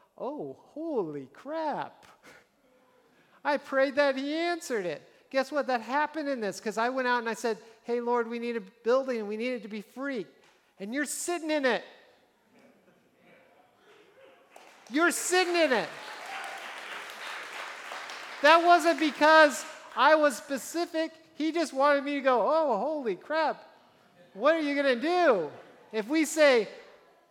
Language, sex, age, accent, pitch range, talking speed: English, male, 50-69, American, 190-290 Hz, 150 wpm